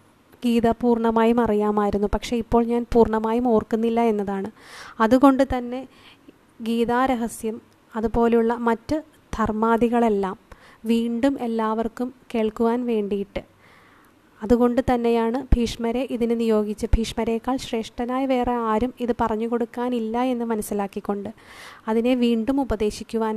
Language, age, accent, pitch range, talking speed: Malayalam, 20-39, native, 220-250 Hz, 90 wpm